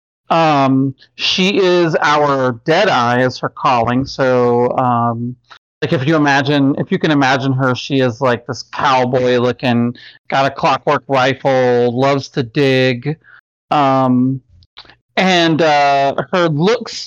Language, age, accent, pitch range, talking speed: English, 40-59, American, 125-155 Hz, 135 wpm